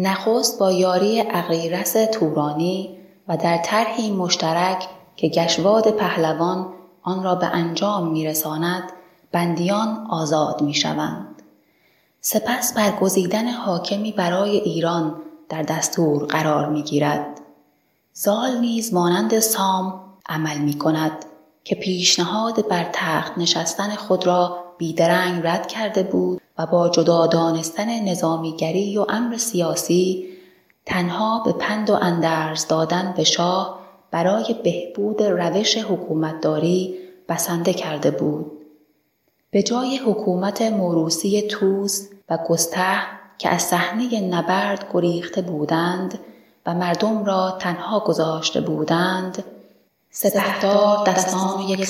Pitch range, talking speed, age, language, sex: 165-200 Hz, 105 wpm, 20-39, Persian, female